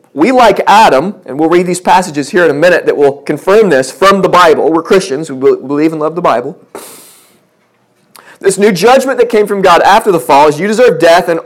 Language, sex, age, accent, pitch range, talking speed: English, male, 30-49, American, 140-200 Hz, 220 wpm